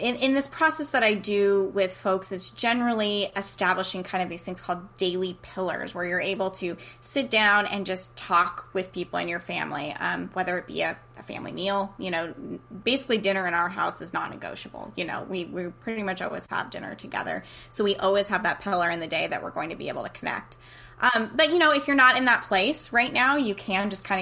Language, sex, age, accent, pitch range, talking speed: English, female, 10-29, American, 185-220 Hz, 230 wpm